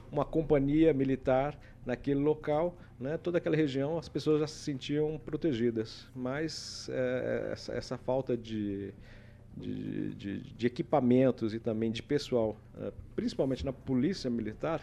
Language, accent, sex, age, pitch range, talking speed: Portuguese, Brazilian, male, 50-69, 110-145 Hz, 120 wpm